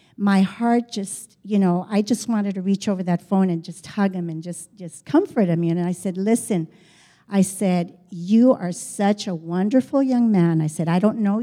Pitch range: 185-245 Hz